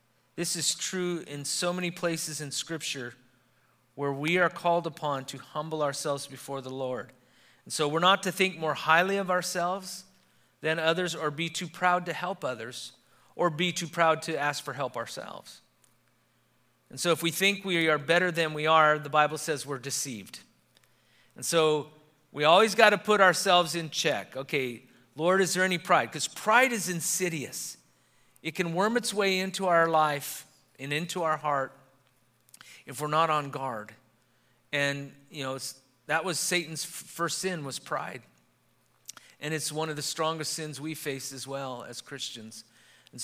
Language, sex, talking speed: English, male, 175 wpm